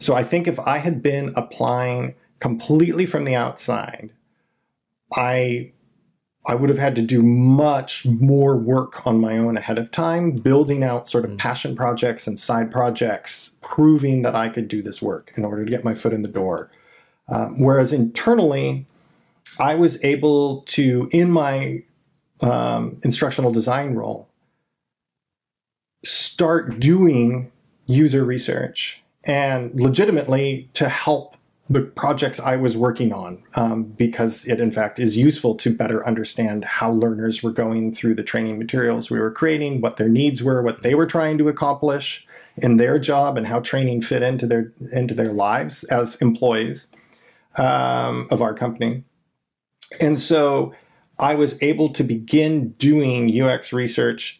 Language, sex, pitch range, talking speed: English, male, 115-140 Hz, 155 wpm